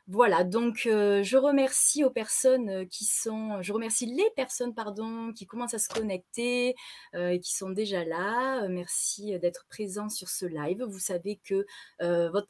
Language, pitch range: French, 185-250 Hz